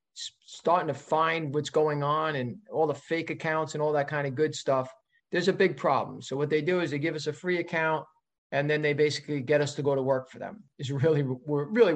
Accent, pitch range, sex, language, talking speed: American, 145-175 Hz, male, English, 235 wpm